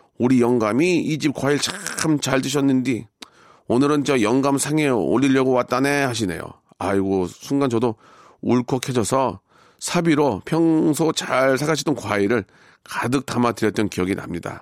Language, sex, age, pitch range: Korean, male, 40-59, 105-135 Hz